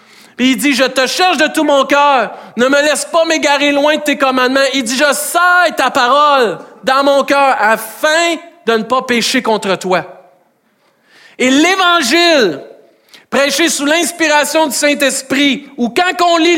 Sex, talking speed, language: male, 170 wpm, French